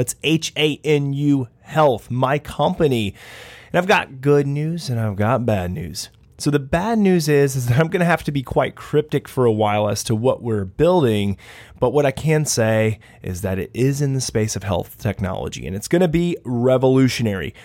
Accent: American